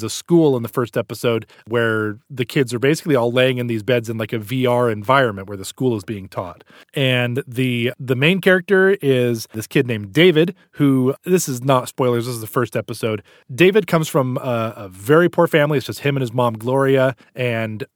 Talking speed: 210 wpm